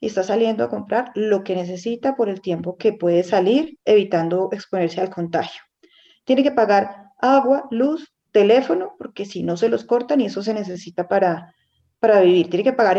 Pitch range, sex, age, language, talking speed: 185-235 Hz, female, 30-49, Spanish, 185 wpm